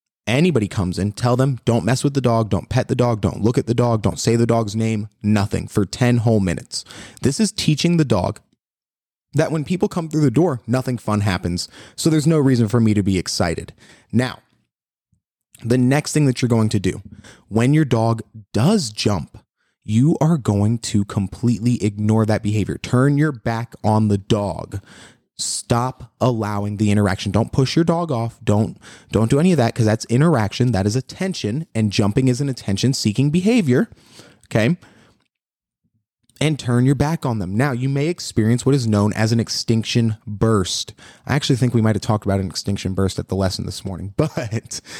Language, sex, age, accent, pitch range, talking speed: English, male, 20-39, American, 105-135 Hz, 190 wpm